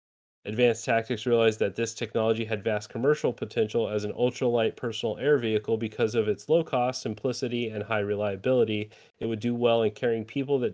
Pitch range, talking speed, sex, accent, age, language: 105-120 Hz, 185 wpm, male, American, 30-49, English